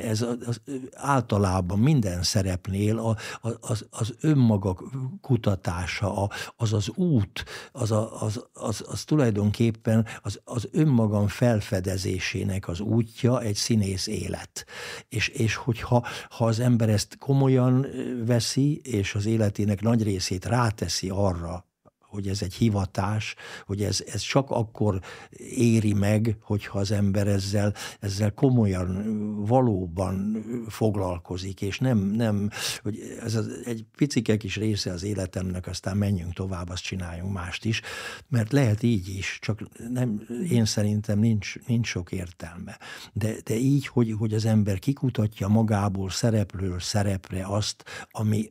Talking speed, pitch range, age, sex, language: 135 wpm, 100-115 Hz, 60-79, male, Hungarian